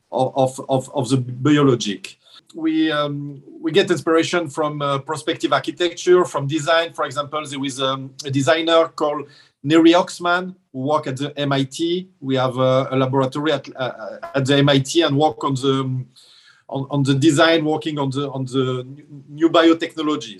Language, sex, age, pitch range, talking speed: English, male, 40-59, 135-170 Hz, 170 wpm